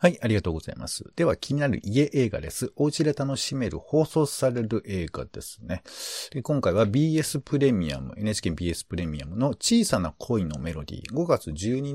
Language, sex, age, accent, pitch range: Japanese, male, 50-69, native, 90-140 Hz